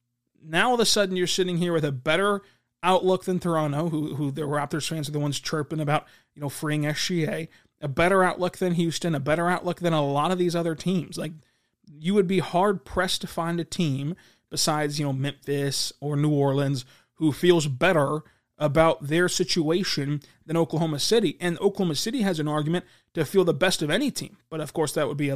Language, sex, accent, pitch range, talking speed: English, male, American, 145-175 Hz, 210 wpm